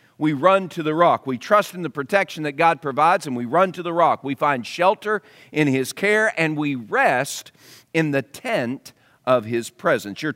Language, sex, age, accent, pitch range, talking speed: English, male, 40-59, American, 120-150 Hz, 205 wpm